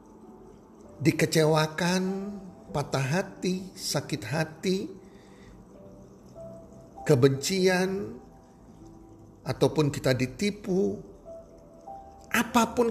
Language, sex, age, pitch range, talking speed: Indonesian, male, 50-69, 115-165 Hz, 45 wpm